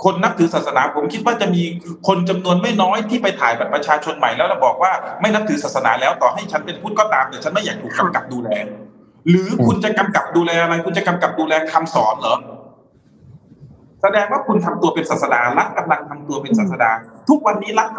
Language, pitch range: Thai, 155-215 Hz